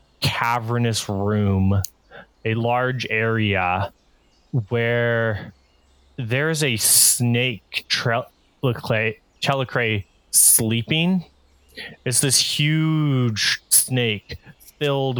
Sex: male